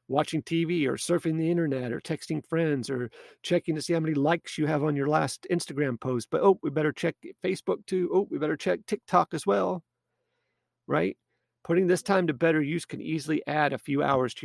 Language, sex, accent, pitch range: English, male, American, 120-170 Hz